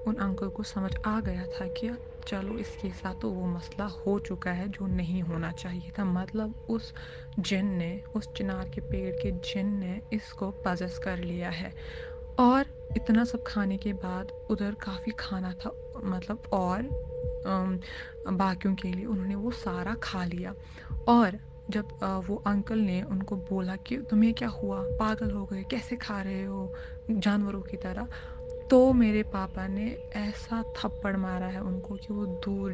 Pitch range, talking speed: 180-220 Hz, 165 wpm